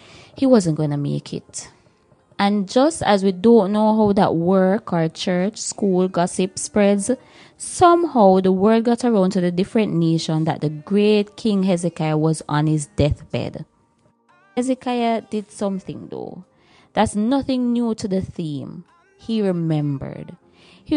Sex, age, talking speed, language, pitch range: female, 20-39, 145 wpm, English, 170-235 Hz